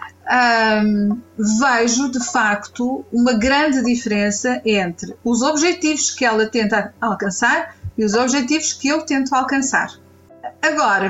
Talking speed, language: 115 wpm, Portuguese